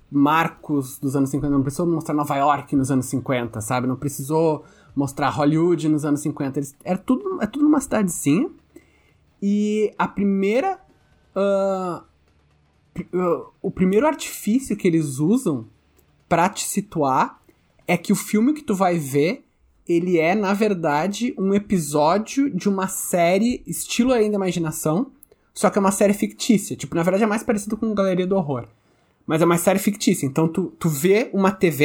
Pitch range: 145-195 Hz